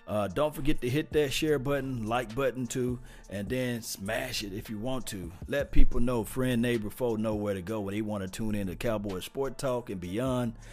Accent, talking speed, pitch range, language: American, 230 wpm, 110-135 Hz, English